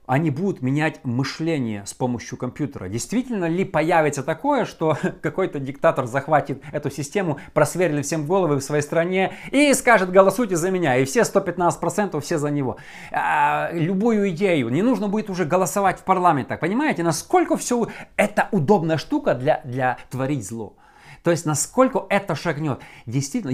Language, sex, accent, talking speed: Russian, male, native, 155 wpm